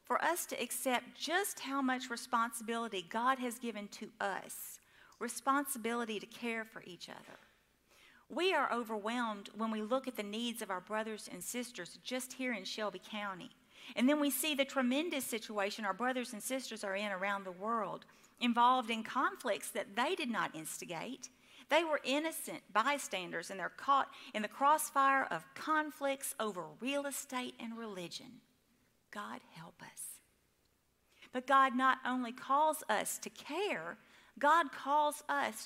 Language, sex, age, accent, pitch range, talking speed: English, female, 40-59, American, 210-270 Hz, 155 wpm